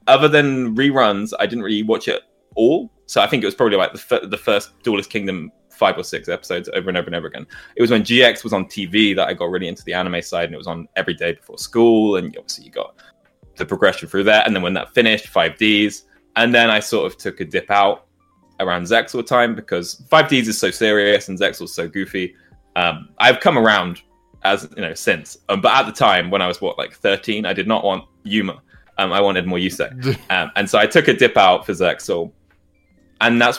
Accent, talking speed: British, 240 wpm